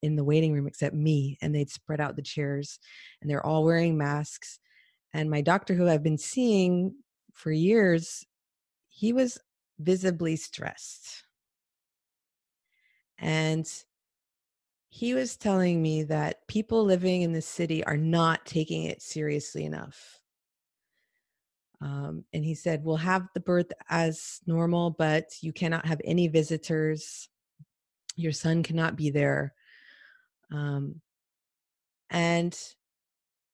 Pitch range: 155-180 Hz